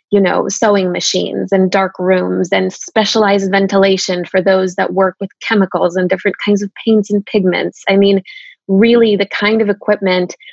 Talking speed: 170 wpm